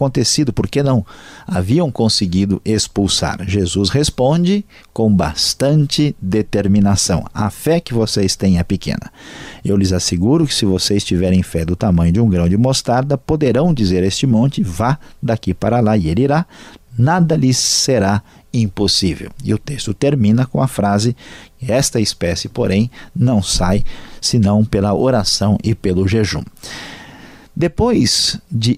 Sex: male